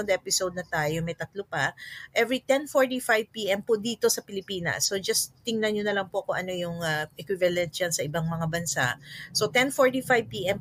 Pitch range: 175-220 Hz